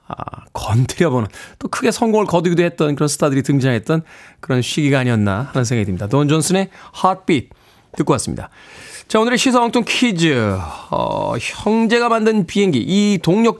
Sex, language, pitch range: male, Korean, 145-195 Hz